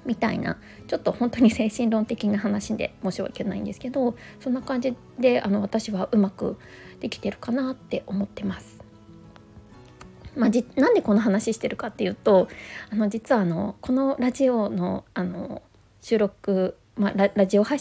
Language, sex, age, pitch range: Japanese, female, 20-39, 195-250 Hz